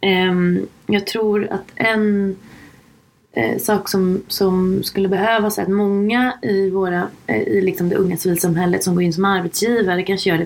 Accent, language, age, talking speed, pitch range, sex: native, Swedish, 20-39, 155 wpm, 180-205 Hz, female